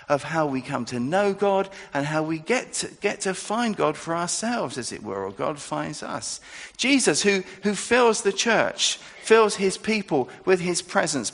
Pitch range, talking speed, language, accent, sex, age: 155-220 Hz, 195 wpm, English, British, male, 50-69